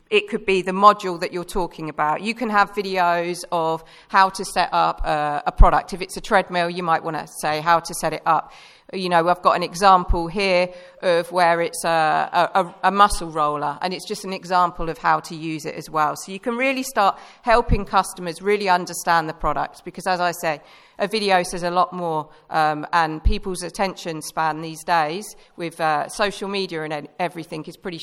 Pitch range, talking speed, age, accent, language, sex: 165-200 Hz, 210 wpm, 40-59, British, English, female